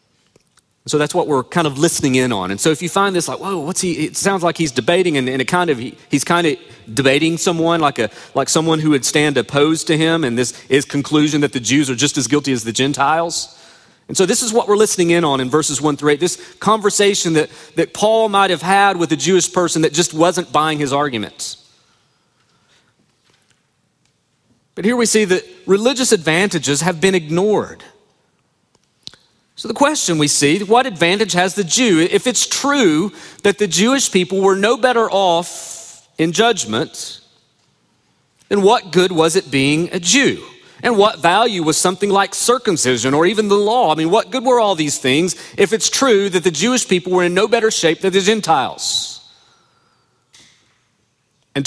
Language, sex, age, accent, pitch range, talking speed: English, male, 40-59, American, 150-200 Hz, 190 wpm